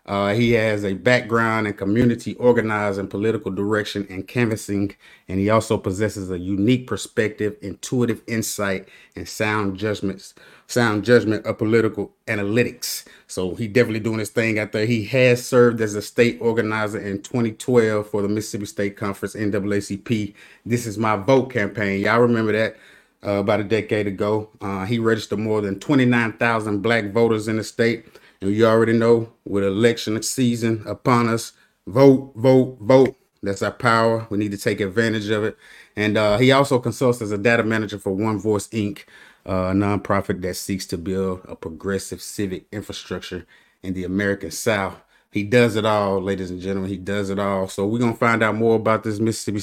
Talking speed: 175 wpm